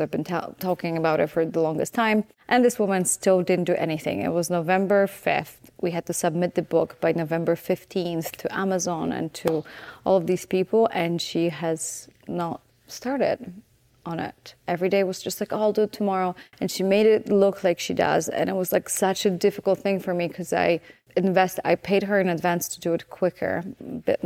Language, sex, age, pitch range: English, female, 30-49, 170-195 Hz